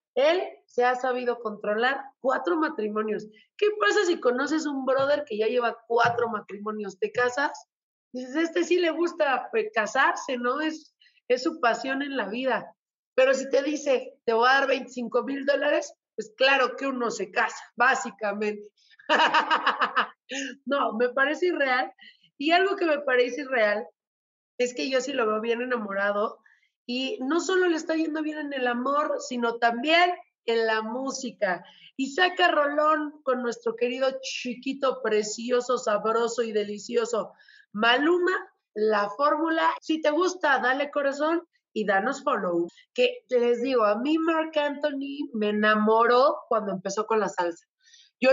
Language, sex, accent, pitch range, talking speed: Spanish, female, Mexican, 230-300 Hz, 155 wpm